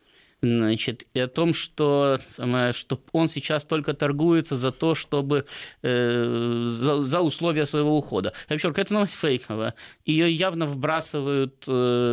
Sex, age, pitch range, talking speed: male, 20-39, 120-155 Hz, 135 wpm